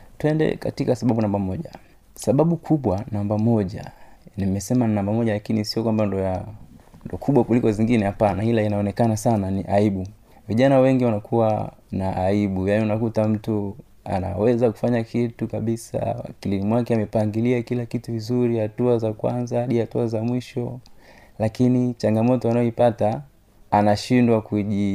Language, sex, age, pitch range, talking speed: Swahili, male, 30-49, 100-120 Hz, 125 wpm